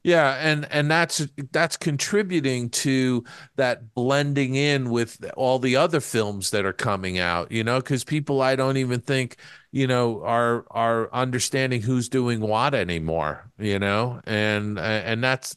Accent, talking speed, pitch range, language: American, 160 wpm, 110-135 Hz, English